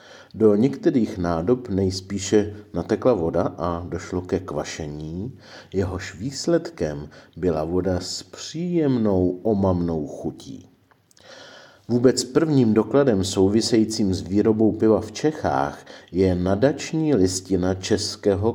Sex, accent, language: male, native, Czech